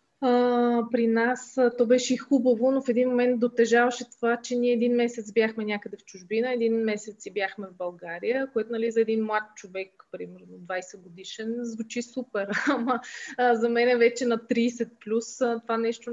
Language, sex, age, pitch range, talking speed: Bulgarian, female, 20-39, 205-245 Hz, 165 wpm